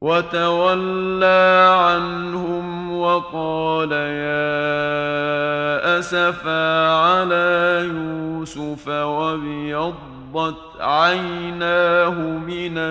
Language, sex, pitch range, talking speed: Arabic, male, 160-175 Hz, 45 wpm